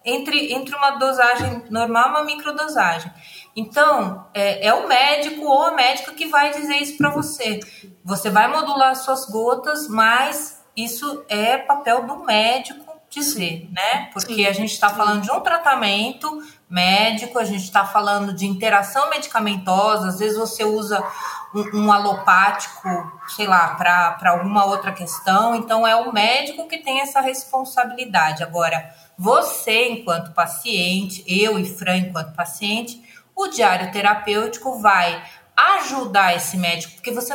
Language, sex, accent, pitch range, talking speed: Portuguese, female, Brazilian, 195-275 Hz, 145 wpm